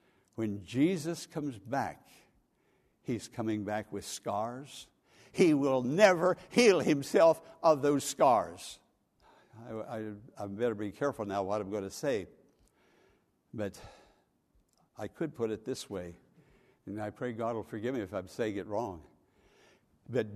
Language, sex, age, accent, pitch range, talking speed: English, male, 60-79, American, 130-190 Hz, 140 wpm